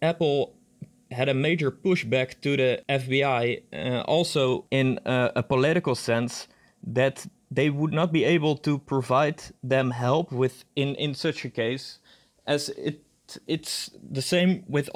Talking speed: 150 wpm